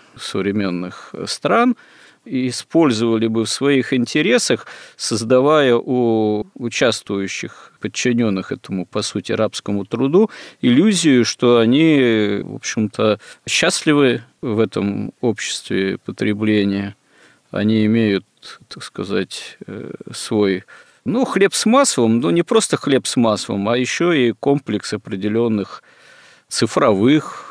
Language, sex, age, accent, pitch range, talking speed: Russian, male, 40-59, native, 105-125 Hz, 105 wpm